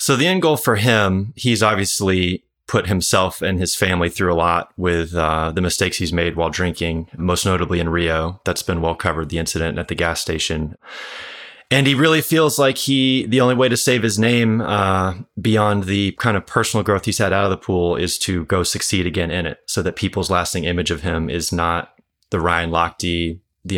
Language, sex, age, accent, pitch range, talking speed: English, male, 30-49, American, 85-105 Hz, 210 wpm